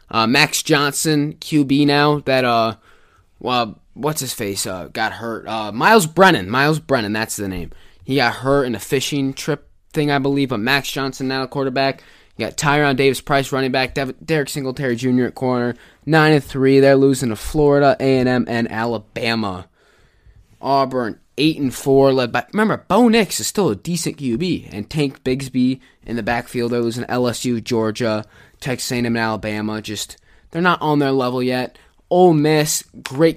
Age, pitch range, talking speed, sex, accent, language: 20-39, 110-140 Hz, 180 wpm, male, American, English